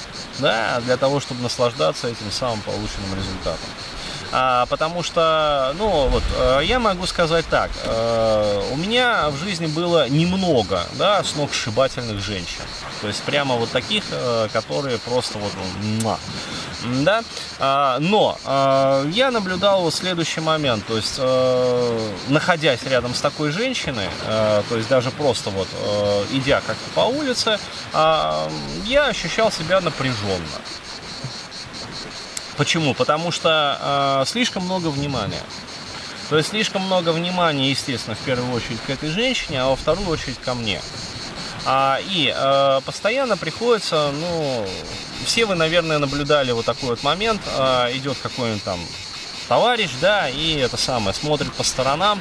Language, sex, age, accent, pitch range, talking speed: Russian, male, 20-39, native, 115-160 Hz, 135 wpm